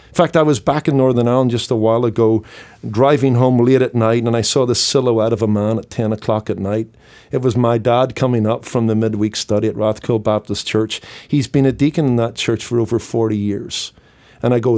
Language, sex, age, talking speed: English, male, 50-69, 235 wpm